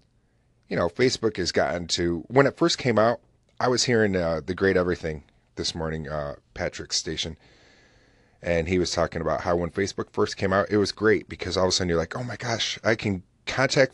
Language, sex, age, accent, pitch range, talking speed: English, male, 30-49, American, 85-105 Hz, 215 wpm